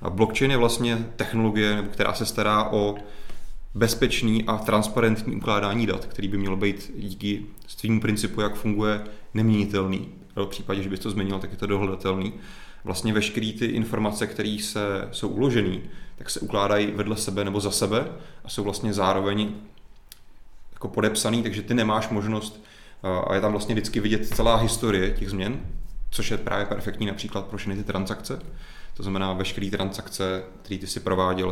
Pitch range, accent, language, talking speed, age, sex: 95-110 Hz, native, Czech, 165 wpm, 30-49, male